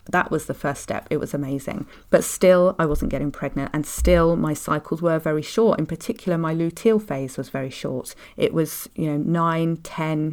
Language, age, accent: English, 40-59, British